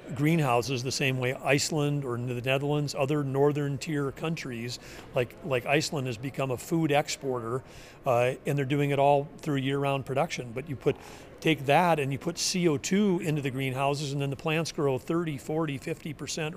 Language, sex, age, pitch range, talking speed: English, male, 40-59, 135-155 Hz, 175 wpm